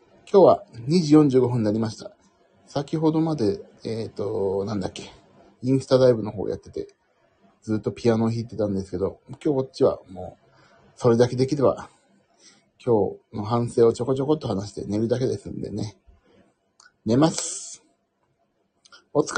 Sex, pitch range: male, 110-160 Hz